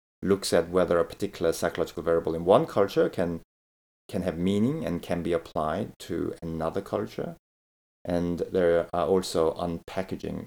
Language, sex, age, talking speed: English, male, 30-49, 150 wpm